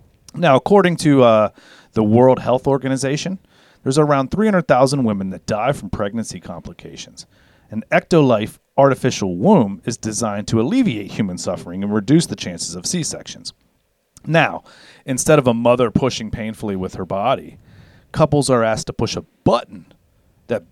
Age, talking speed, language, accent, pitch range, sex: 40-59, 150 wpm, English, American, 100-130 Hz, male